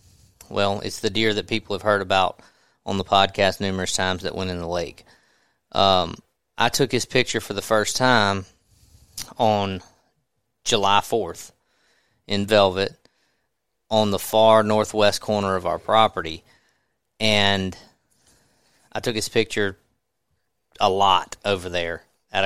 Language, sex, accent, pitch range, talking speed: English, male, American, 100-115 Hz, 135 wpm